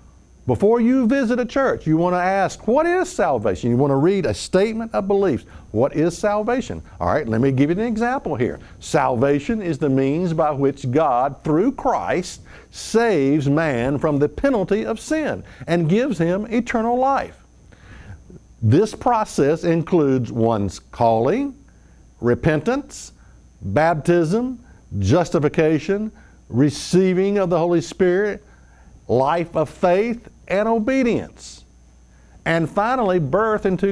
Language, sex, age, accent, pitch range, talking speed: English, male, 60-79, American, 135-220 Hz, 135 wpm